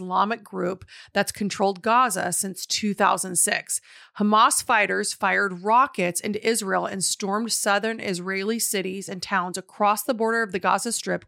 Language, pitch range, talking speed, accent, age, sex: English, 195-235 Hz, 145 wpm, American, 30-49, female